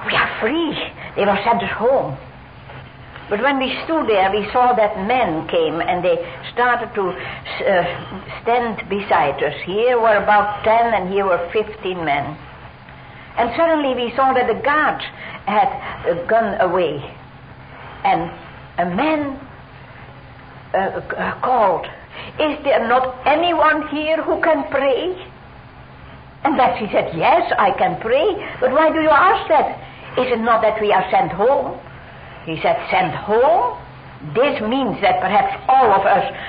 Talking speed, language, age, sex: 155 wpm, English, 60-79, female